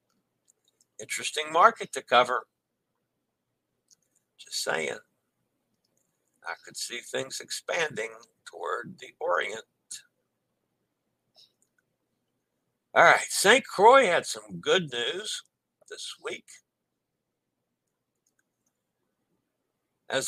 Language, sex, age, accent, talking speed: English, male, 60-79, American, 75 wpm